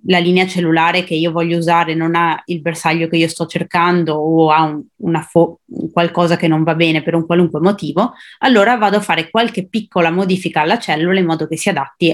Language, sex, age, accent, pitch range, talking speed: Italian, female, 20-39, native, 165-200 Hz, 215 wpm